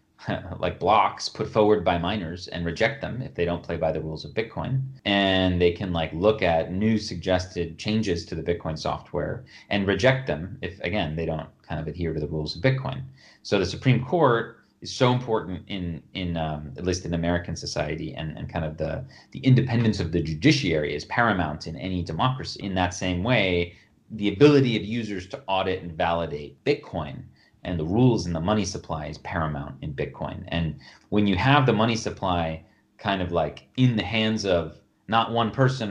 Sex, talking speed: male, 195 wpm